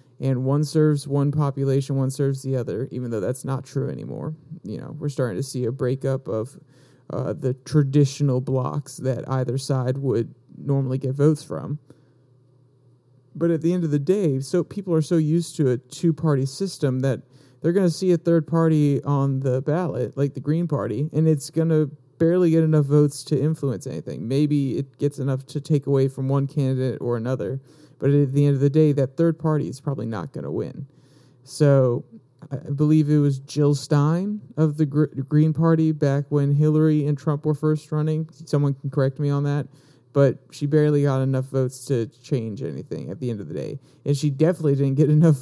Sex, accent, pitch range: male, American, 135-155 Hz